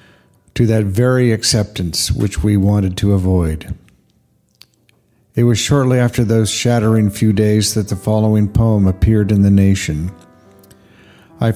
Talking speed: 135 wpm